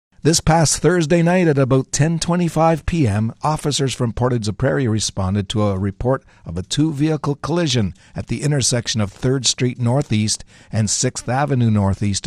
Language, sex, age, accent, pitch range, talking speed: English, male, 60-79, American, 100-130 Hz, 155 wpm